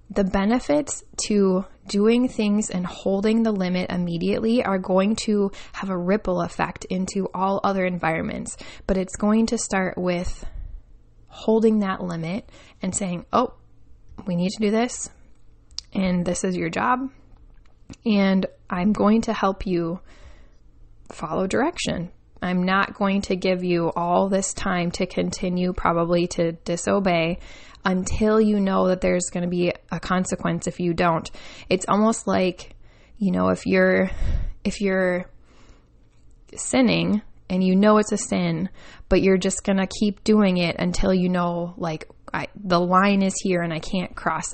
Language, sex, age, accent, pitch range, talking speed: English, female, 20-39, American, 180-215 Hz, 155 wpm